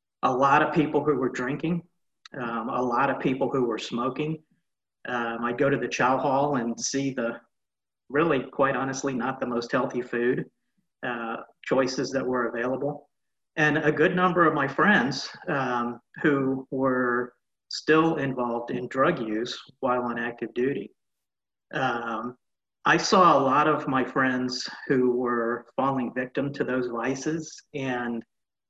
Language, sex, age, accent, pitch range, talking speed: English, male, 40-59, American, 120-140 Hz, 155 wpm